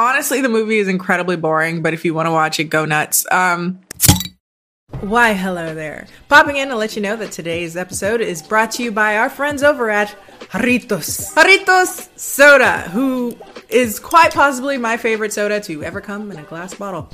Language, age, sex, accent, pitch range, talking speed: English, 20-39, female, American, 180-245 Hz, 190 wpm